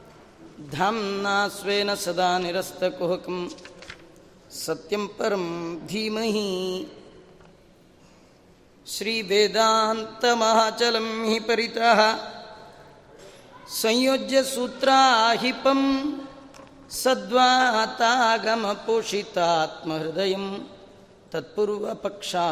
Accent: native